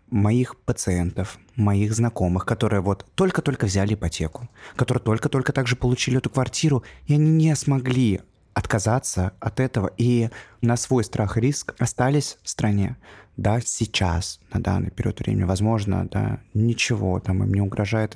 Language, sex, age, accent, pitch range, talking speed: Russian, male, 20-39, native, 95-120 Hz, 145 wpm